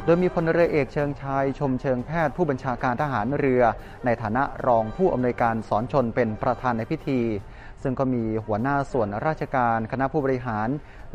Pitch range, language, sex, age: 115-140 Hz, Thai, male, 20-39